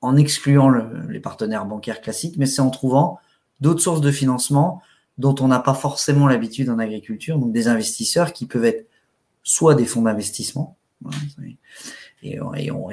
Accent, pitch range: French, 120-145 Hz